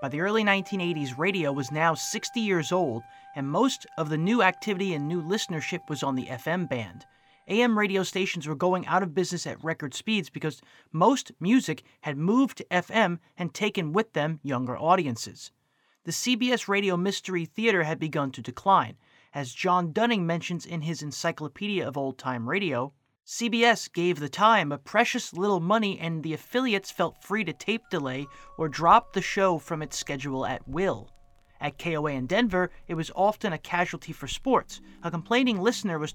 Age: 30-49